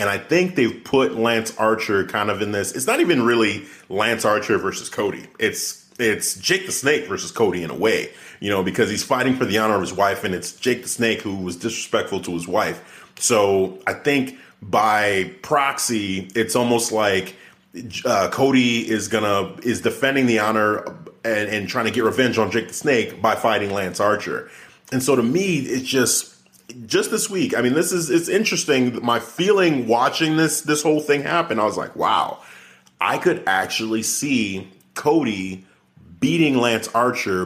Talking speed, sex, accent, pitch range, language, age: 185 wpm, male, American, 105-130 Hz, English, 30-49